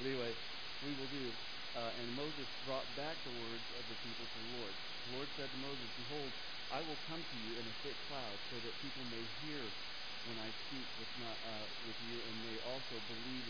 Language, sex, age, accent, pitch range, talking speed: English, male, 50-69, American, 115-140 Hz, 220 wpm